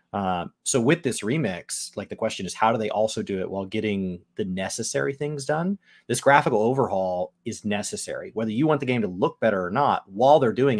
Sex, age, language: male, 30-49, English